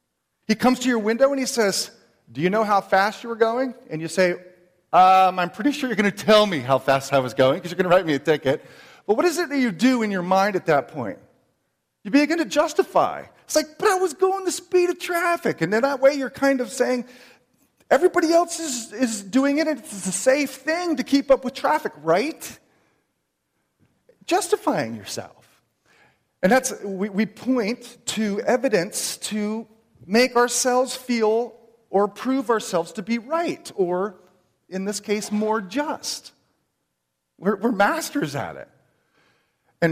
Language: English